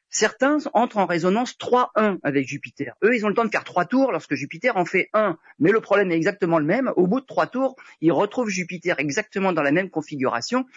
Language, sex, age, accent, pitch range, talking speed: French, male, 40-59, French, 155-220 Hz, 230 wpm